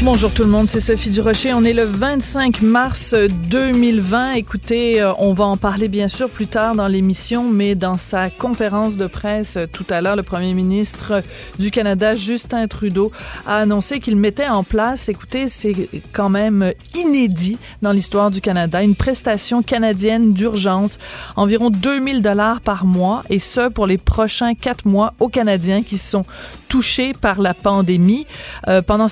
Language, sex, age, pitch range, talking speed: French, female, 30-49, 190-230 Hz, 165 wpm